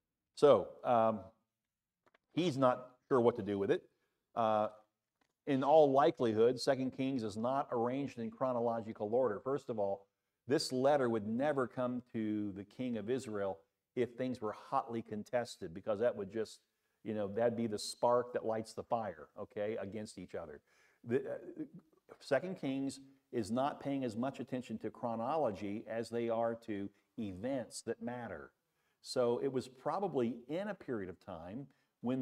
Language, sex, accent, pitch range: English, male, American, 110-135 Hz